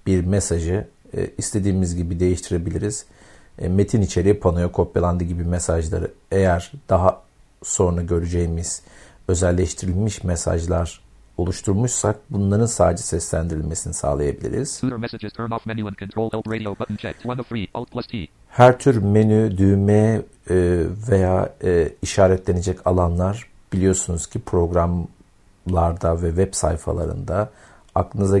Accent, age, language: native, 50-69, Turkish